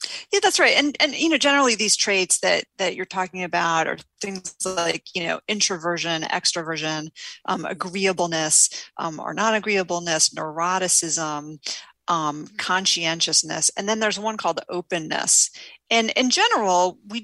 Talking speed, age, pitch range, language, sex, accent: 145 wpm, 40-59, 160-205 Hz, English, female, American